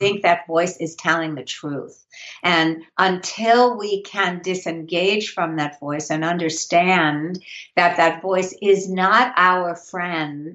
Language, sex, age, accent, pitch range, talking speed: English, female, 60-79, American, 160-200 Hz, 135 wpm